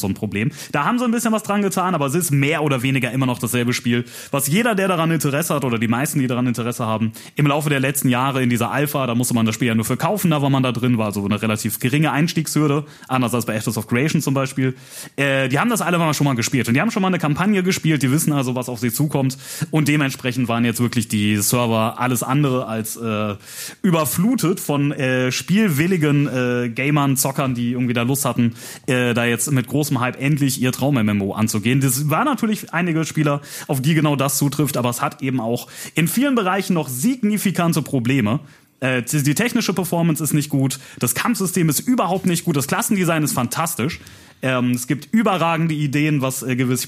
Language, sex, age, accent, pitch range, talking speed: German, male, 30-49, German, 125-165 Hz, 225 wpm